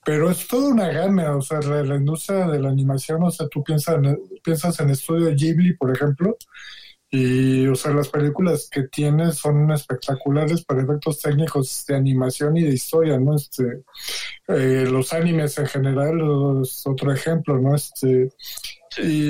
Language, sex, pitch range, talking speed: Spanish, male, 140-170 Hz, 170 wpm